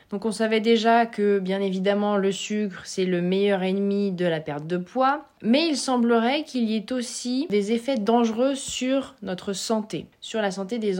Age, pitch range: 20-39, 190-245 Hz